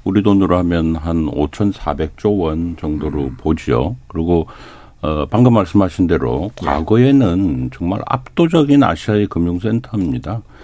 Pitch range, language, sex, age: 80-120 Hz, Korean, male, 50-69